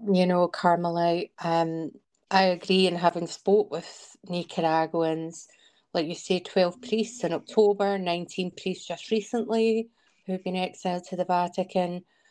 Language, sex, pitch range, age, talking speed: English, female, 175-200 Hz, 30-49, 140 wpm